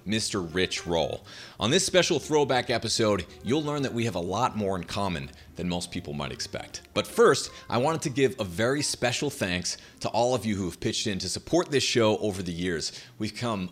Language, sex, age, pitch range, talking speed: English, male, 30-49, 90-125 Hz, 220 wpm